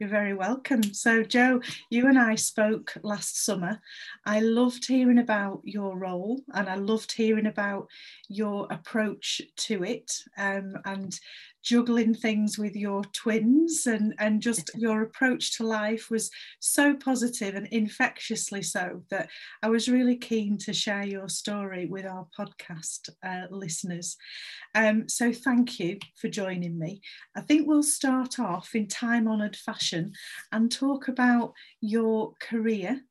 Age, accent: 40-59, British